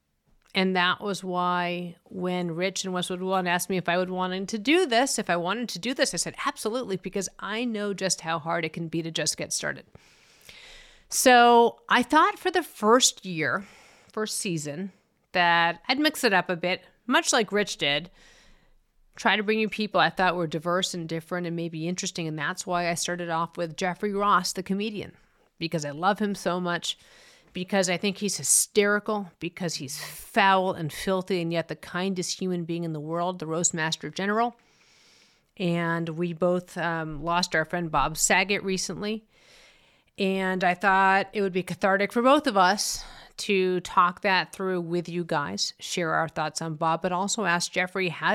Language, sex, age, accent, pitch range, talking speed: English, female, 40-59, American, 170-210 Hz, 190 wpm